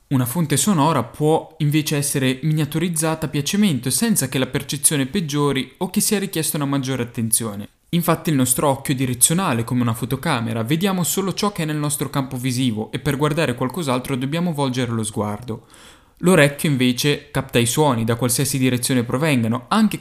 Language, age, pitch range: Italian, 10-29, 125-160 Hz